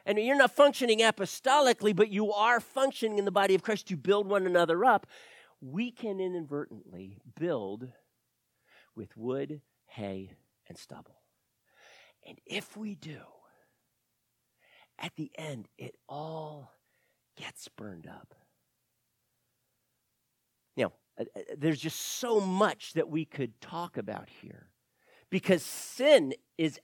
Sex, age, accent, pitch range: male, 40-59, American, 130-210 Hz